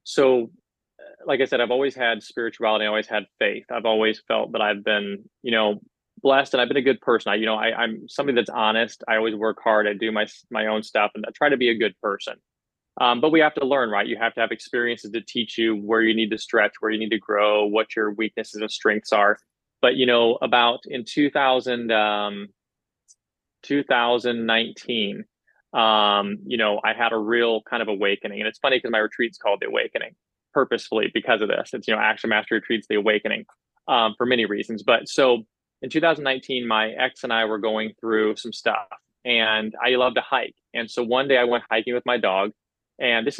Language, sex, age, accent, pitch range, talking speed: English, male, 20-39, American, 110-120 Hz, 215 wpm